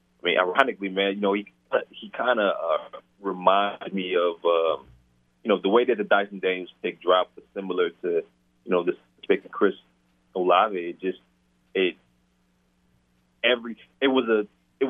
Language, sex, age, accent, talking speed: English, male, 30-49, American, 175 wpm